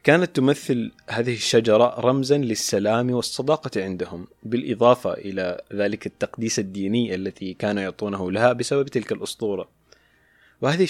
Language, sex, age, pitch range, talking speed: Arabic, male, 20-39, 100-130 Hz, 115 wpm